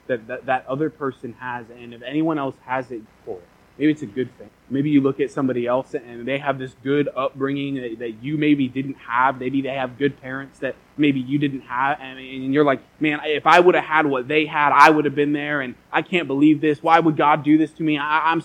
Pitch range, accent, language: 130-150 Hz, American, English